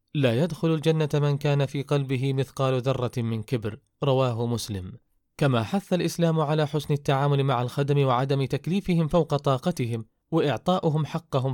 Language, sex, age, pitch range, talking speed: Arabic, male, 30-49, 125-155 Hz, 140 wpm